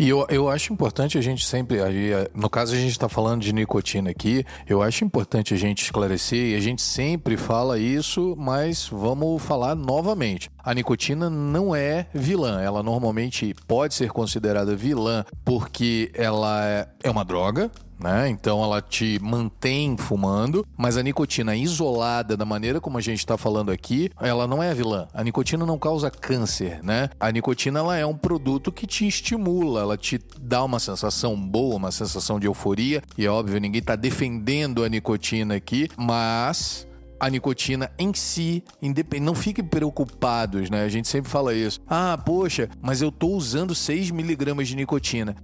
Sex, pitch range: male, 110-145 Hz